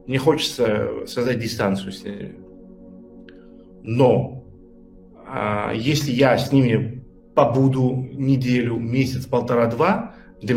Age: 40-59